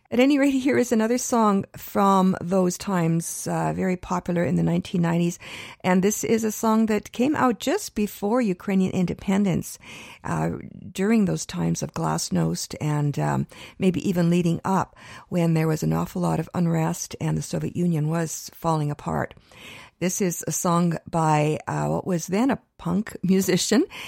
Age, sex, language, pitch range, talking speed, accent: 50-69, female, English, 160-205 Hz, 165 wpm, American